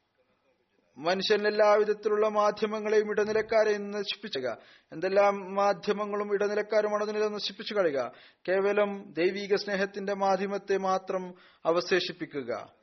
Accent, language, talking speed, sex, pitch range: native, Malayalam, 75 wpm, male, 185-210 Hz